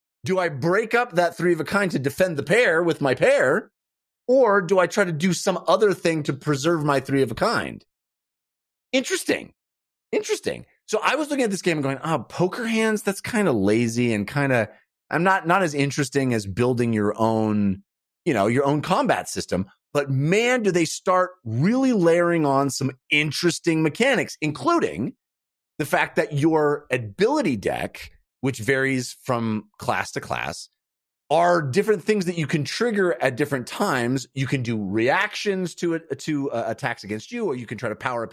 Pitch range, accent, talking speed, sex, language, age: 130-180 Hz, American, 190 wpm, male, English, 30-49